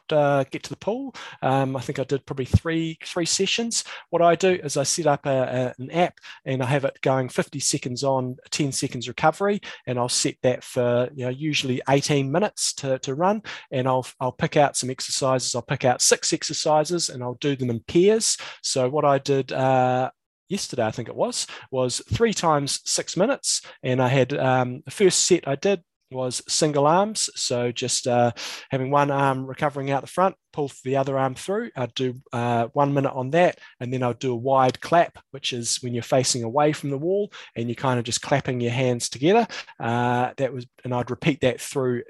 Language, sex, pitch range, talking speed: English, male, 125-155 Hz, 215 wpm